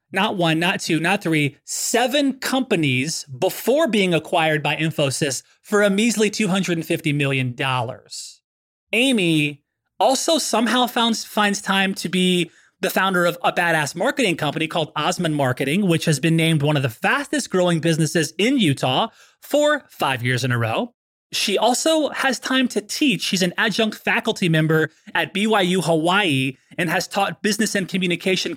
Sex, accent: male, American